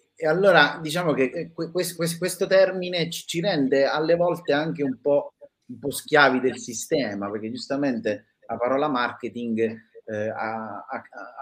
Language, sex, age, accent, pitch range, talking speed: Italian, male, 30-49, native, 115-150 Hz, 120 wpm